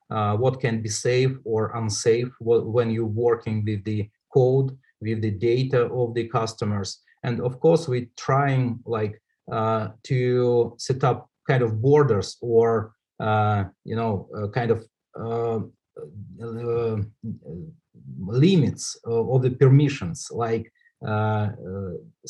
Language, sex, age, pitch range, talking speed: English, male, 30-49, 110-130 Hz, 130 wpm